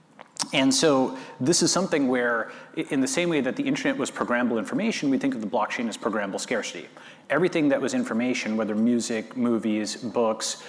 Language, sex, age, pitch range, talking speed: English, male, 30-49, 110-180 Hz, 180 wpm